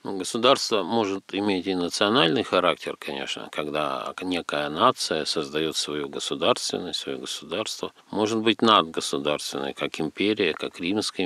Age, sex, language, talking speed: 50-69, male, Russian, 115 wpm